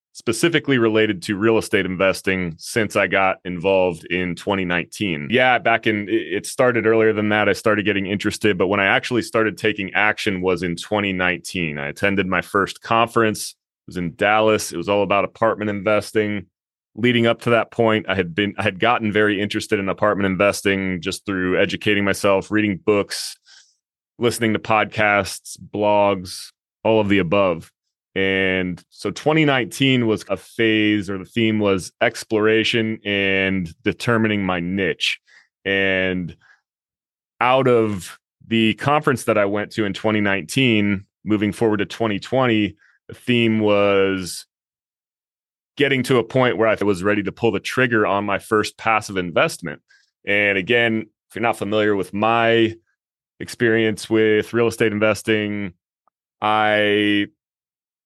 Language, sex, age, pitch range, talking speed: English, male, 30-49, 95-110 Hz, 150 wpm